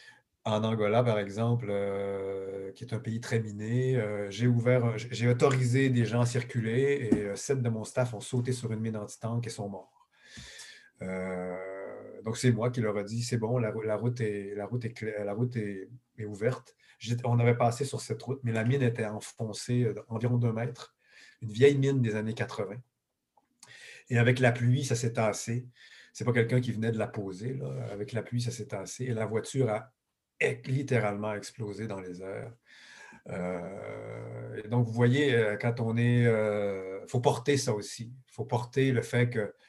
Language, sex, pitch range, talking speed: French, male, 105-125 Hz, 175 wpm